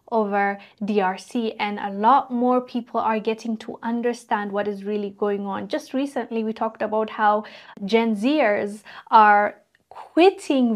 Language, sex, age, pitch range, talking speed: English, female, 20-39, 205-240 Hz, 145 wpm